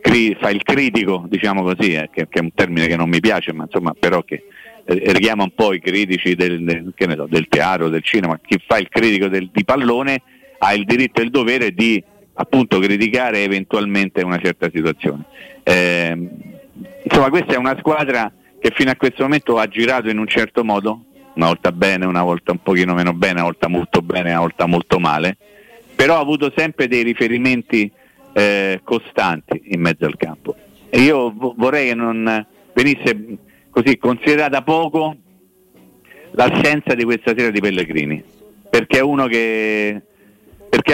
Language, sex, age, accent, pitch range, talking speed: Italian, male, 50-69, native, 95-145 Hz, 175 wpm